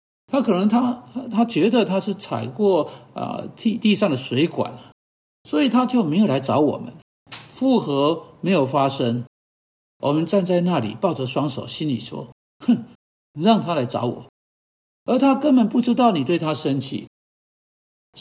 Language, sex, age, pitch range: Chinese, male, 60-79, 140-225 Hz